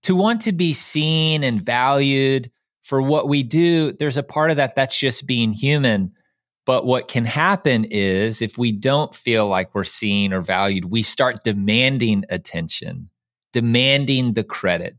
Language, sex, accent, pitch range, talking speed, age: English, male, American, 110-145 Hz, 165 wpm, 30-49